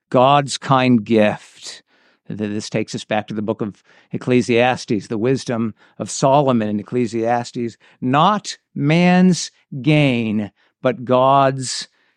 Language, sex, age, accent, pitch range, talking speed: English, male, 50-69, American, 120-150 Hz, 115 wpm